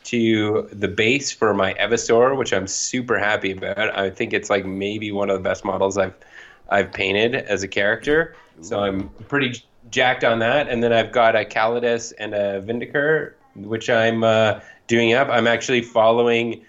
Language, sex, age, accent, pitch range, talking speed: English, male, 20-39, American, 100-120 Hz, 185 wpm